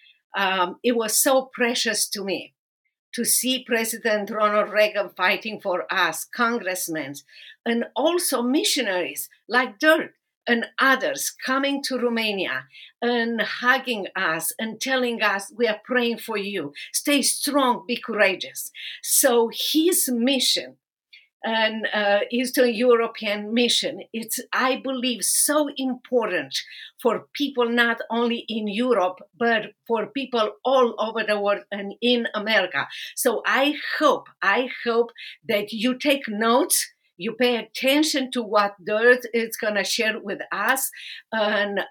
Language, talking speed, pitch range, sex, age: English, 130 wpm, 210-255 Hz, female, 50-69